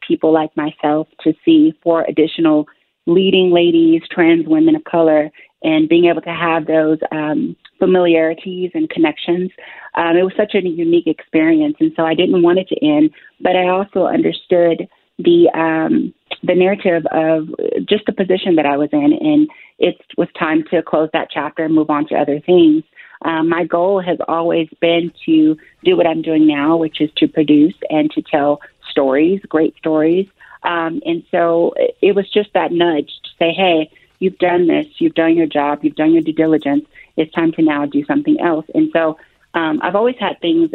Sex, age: female, 30-49